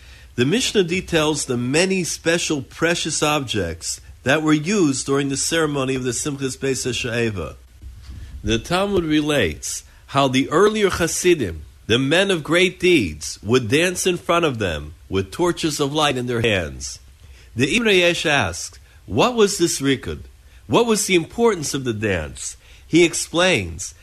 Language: English